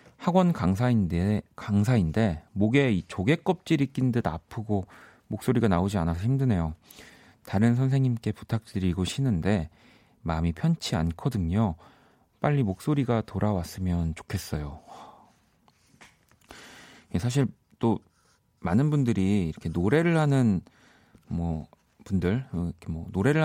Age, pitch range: 40-59, 90-130 Hz